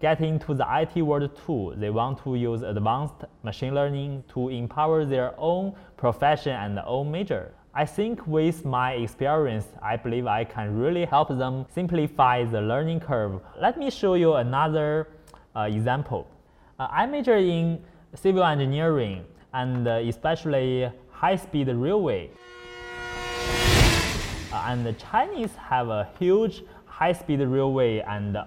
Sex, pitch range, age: male, 115-165 Hz, 20-39